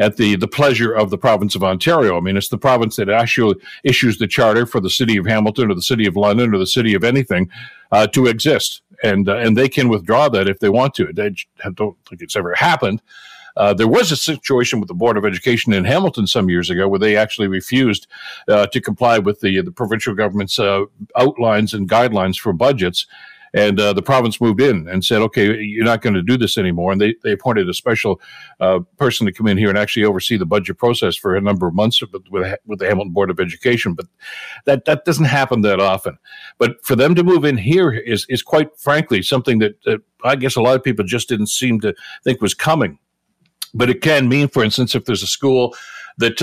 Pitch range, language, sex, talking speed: 105-130 Hz, English, male, 230 wpm